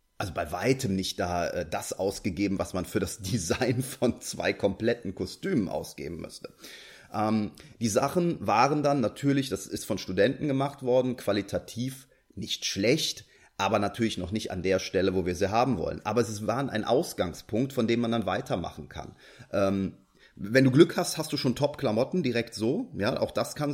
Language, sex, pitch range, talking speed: German, male, 100-130 Hz, 180 wpm